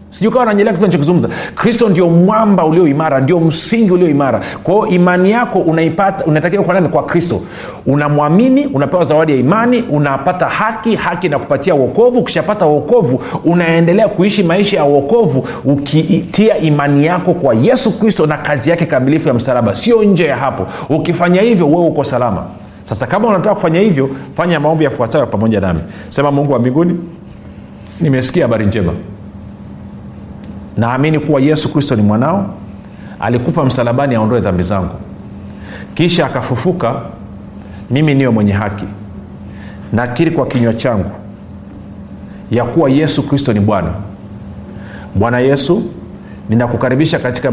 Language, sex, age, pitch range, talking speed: Swahili, male, 50-69, 105-170 Hz, 135 wpm